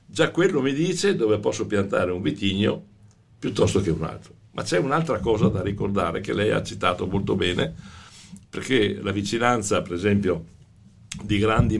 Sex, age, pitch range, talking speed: male, 60-79, 95-110 Hz, 165 wpm